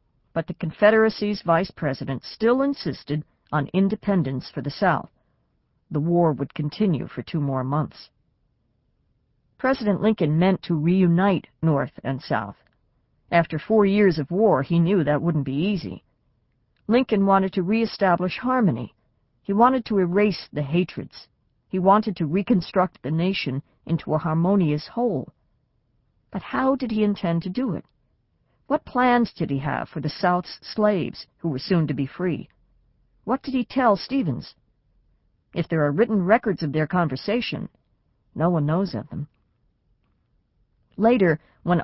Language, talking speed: English, 150 wpm